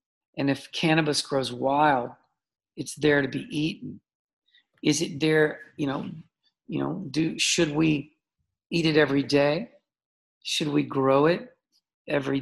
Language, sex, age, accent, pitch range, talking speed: English, male, 50-69, American, 145-180 Hz, 140 wpm